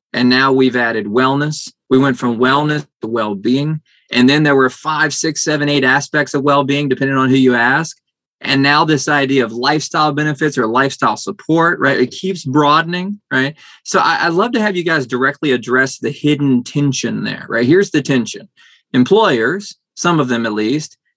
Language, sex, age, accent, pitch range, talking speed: English, male, 20-39, American, 125-155 Hz, 185 wpm